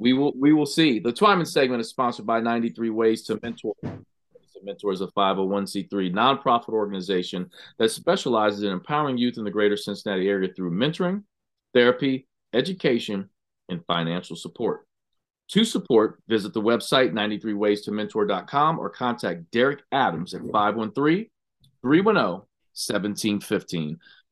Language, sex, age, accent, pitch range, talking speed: English, male, 40-59, American, 105-125 Hz, 130 wpm